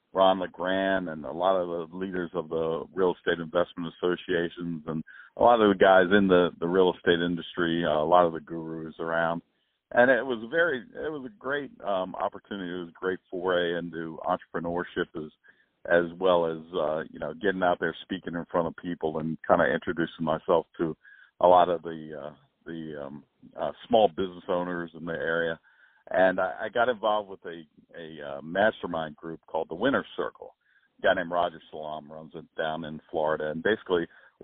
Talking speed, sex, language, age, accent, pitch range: 195 wpm, male, English, 50-69, American, 80-95 Hz